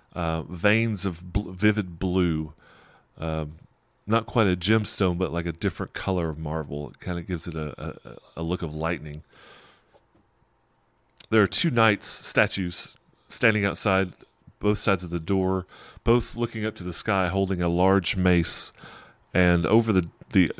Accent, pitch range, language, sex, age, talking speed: American, 85-100 Hz, English, male, 30-49, 160 wpm